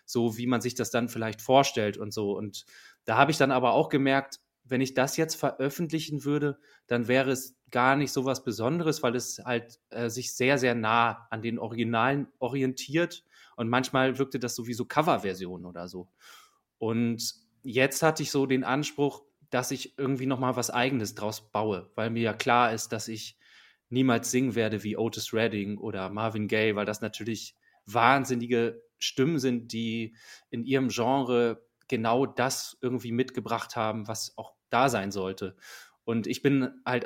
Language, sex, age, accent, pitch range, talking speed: German, male, 20-39, German, 110-130 Hz, 175 wpm